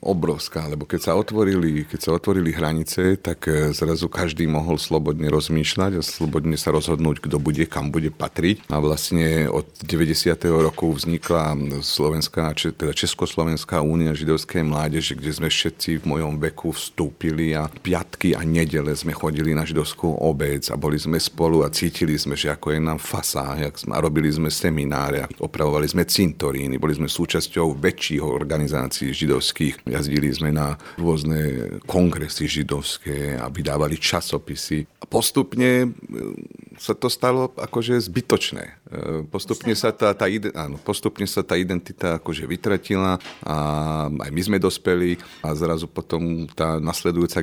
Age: 40-59